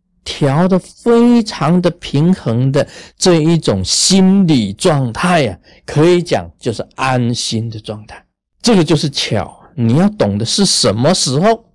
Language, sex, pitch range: Chinese, male, 105-150 Hz